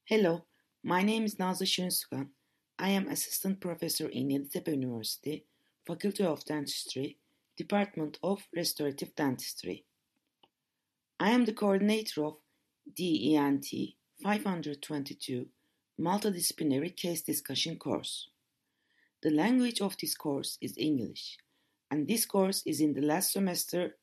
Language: Turkish